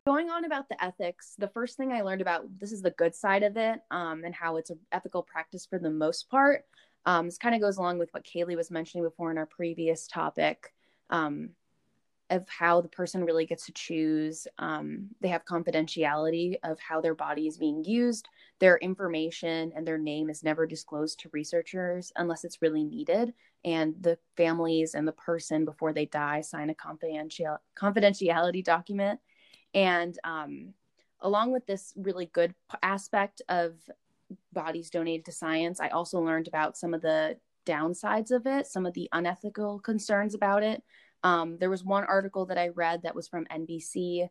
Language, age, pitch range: English, 20-39, 165-195 Hz